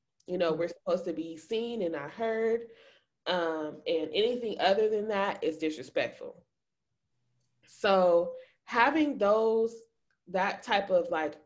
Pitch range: 165-225 Hz